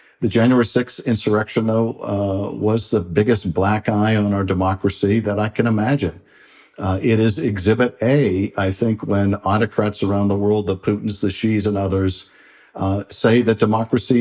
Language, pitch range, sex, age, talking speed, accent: English, 100-115 Hz, male, 50-69, 170 wpm, American